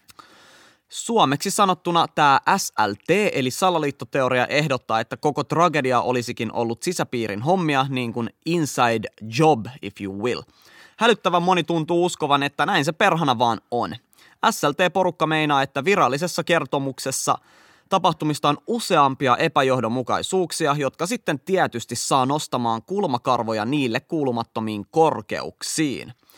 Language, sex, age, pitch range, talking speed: Finnish, male, 20-39, 125-170 Hz, 110 wpm